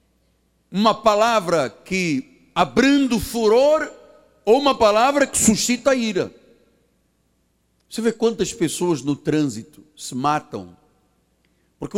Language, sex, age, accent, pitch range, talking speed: Portuguese, male, 60-79, Brazilian, 175-285 Hz, 110 wpm